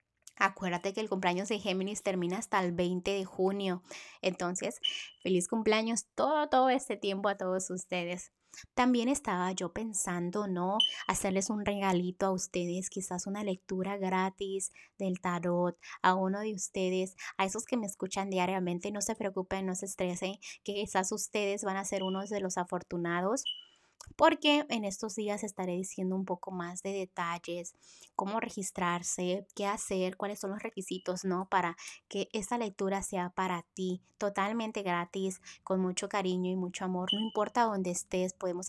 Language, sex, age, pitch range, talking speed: Spanish, female, 20-39, 180-200 Hz, 160 wpm